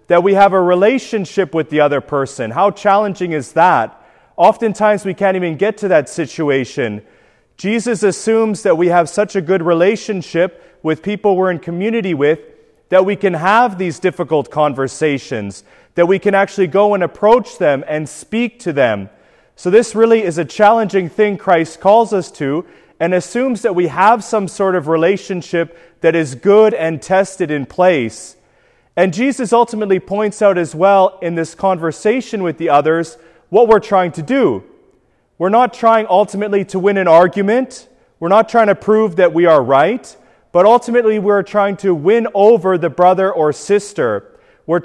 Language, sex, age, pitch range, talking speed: English, male, 30-49, 170-210 Hz, 175 wpm